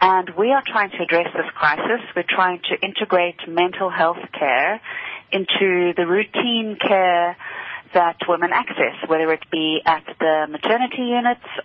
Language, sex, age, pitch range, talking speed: English, female, 30-49, 160-200 Hz, 150 wpm